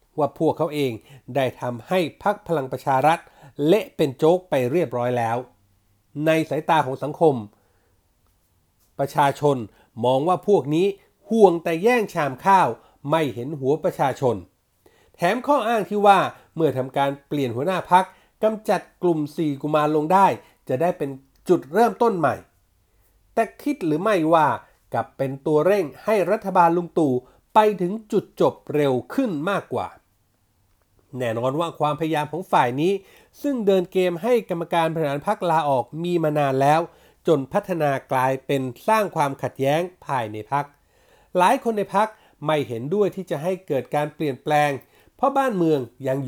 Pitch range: 130-190 Hz